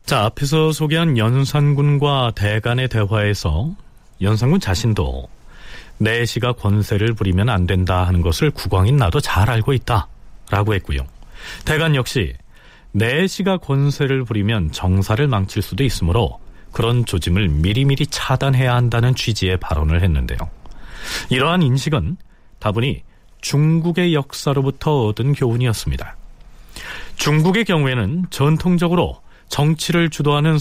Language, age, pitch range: Korean, 40-59, 100-150 Hz